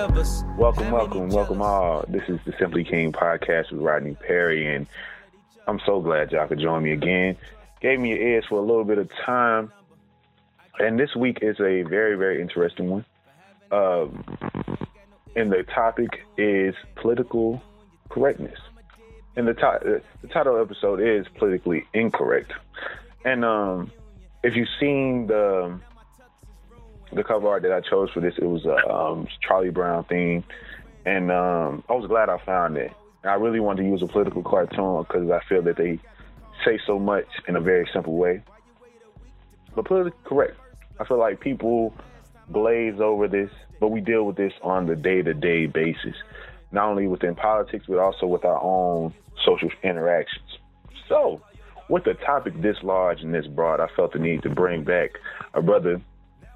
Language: English